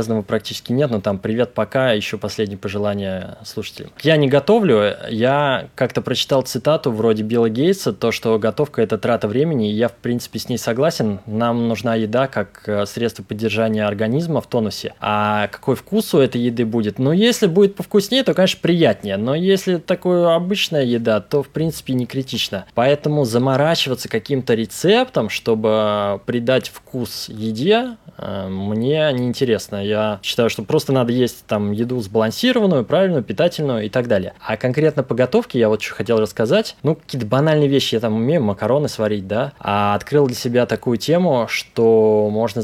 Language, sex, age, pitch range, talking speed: Russian, male, 20-39, 110-145 Hz, 165 wpm